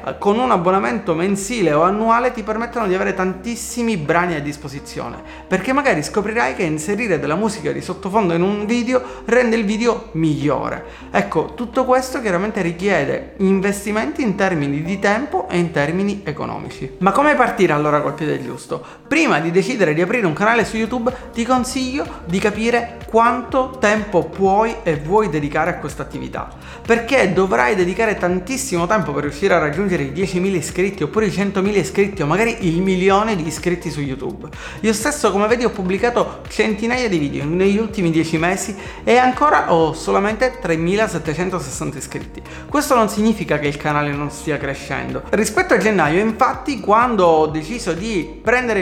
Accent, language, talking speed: native, Italian, 165 wpm